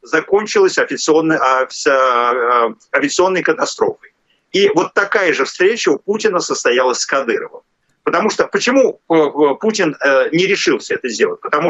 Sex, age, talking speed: male, 40-59, 125 wpm